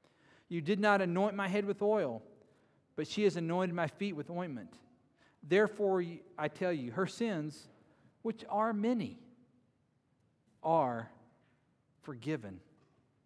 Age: 40-59